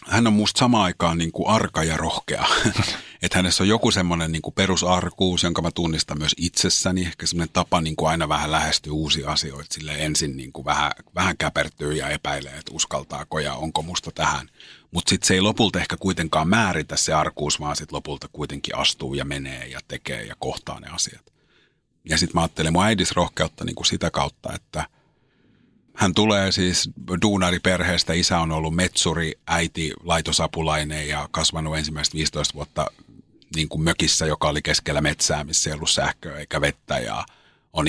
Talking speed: 170 wpm